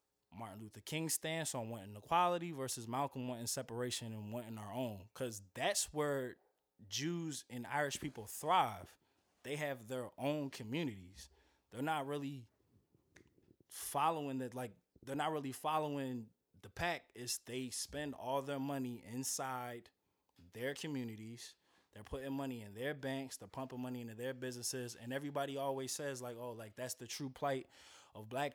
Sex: male